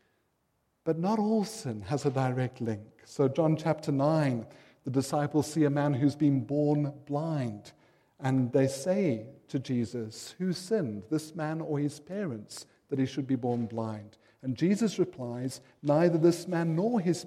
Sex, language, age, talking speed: male, English, 50-69, 165 wpm